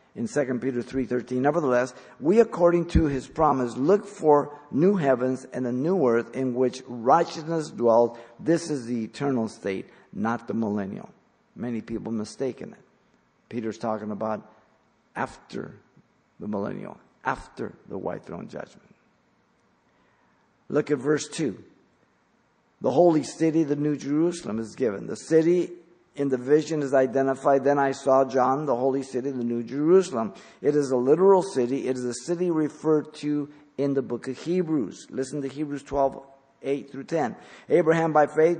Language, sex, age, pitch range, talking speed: English, male, 50-69, 125-160 Hz, 155 wpm